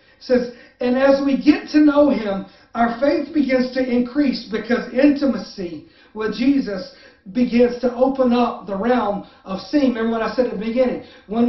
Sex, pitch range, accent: male, 225-270 Hz, American